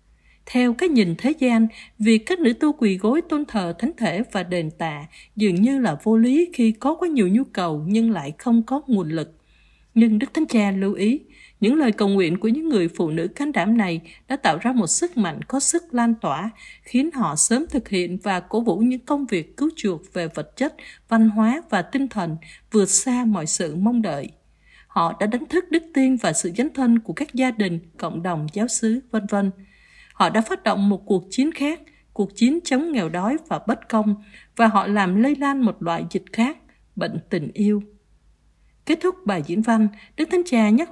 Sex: female